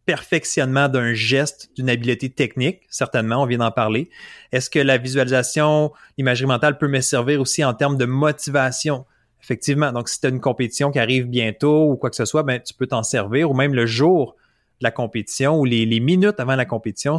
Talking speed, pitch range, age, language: 205 wpm, 120-150 Hz, 30-49, French